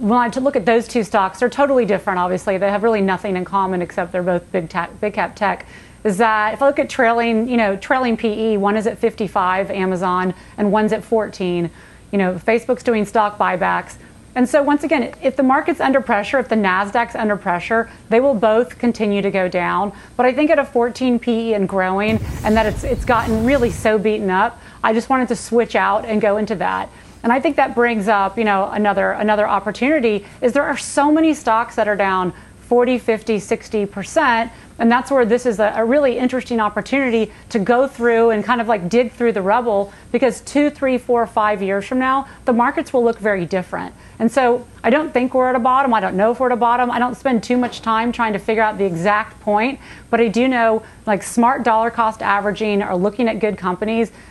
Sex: female